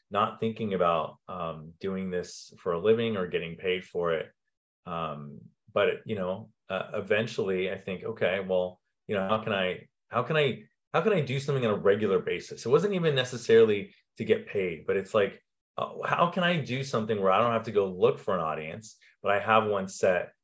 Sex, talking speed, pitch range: male, 210 wpm, 90-120 Hz